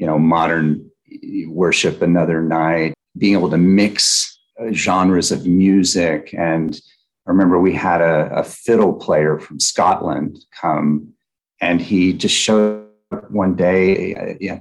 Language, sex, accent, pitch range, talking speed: English, male, American, 85-95 Hz, 135 wpm